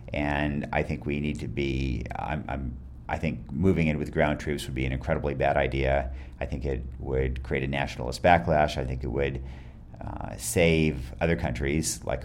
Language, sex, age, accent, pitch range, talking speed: English, male, 40-59, American, 70-85 Hz, 190 wpm